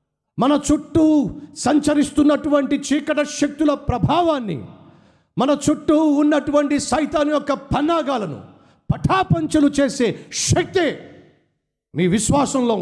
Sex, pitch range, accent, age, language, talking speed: male, 280-310 Hz, native, 50-69, Telugu, 80 wpm